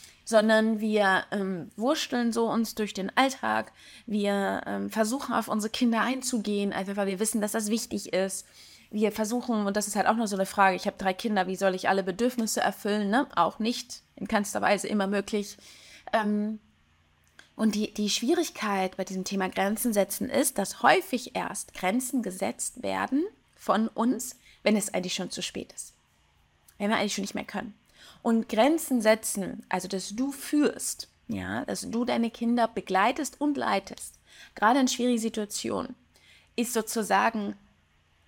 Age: 20-39